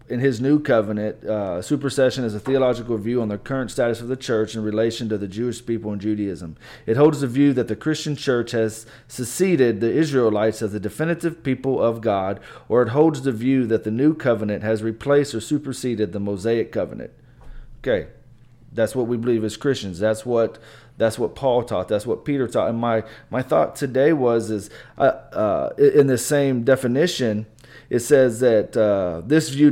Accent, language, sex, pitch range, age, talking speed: American, English, male, 110-135 Hz, 30-49, 190 wpm